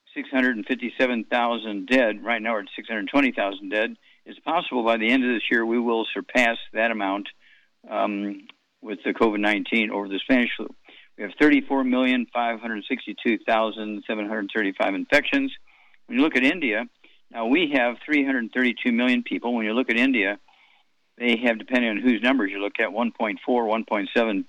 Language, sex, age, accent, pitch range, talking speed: English, male, 50-69, American, 105-130 Hz, 145 wpm